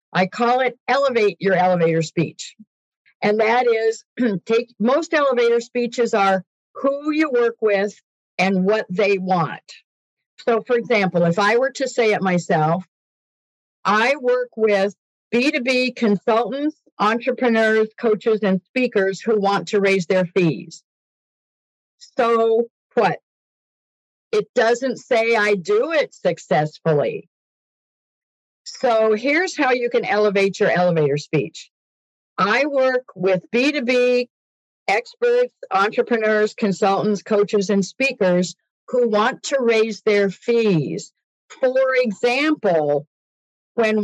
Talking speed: 115 wpm